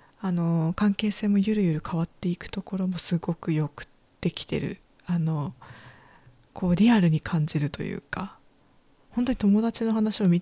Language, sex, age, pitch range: Japanese, female, 20-39, 165-205 Hz